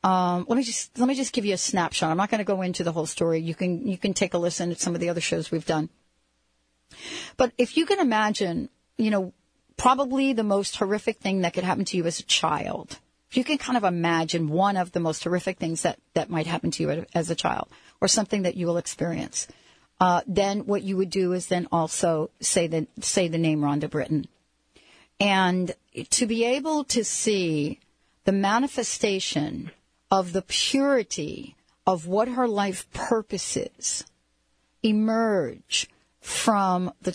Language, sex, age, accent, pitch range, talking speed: English, female, 40-59, American, 170-220 Hz, 190 wpm